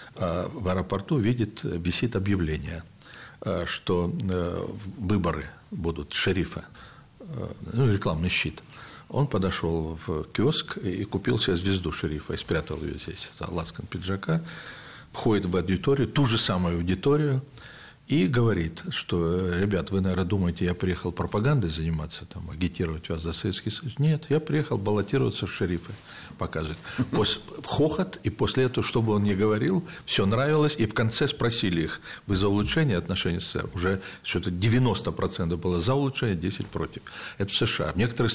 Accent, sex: native, male